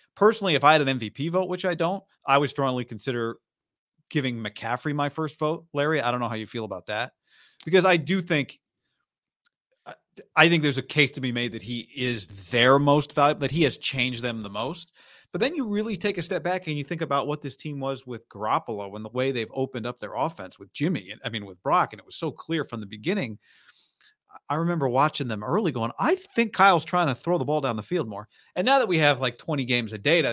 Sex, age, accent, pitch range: male, 40-59, American, 120-155 Hz